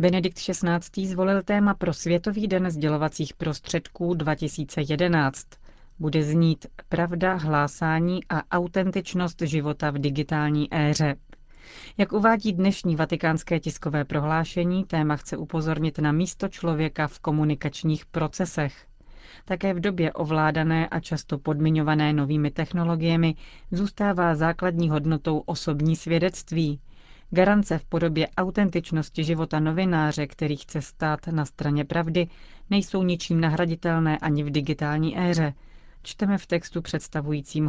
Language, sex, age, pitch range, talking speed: Czech, female, 30-49, 150-175 Hz, 115 wpm